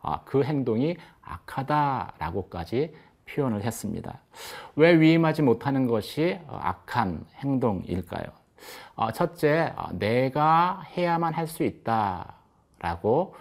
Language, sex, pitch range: Korean, male, 115-160 Hz